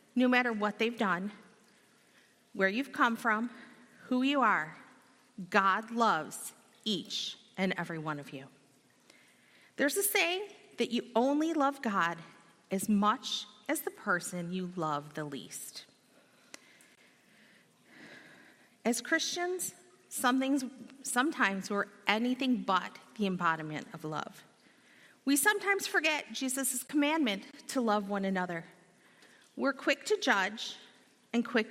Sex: female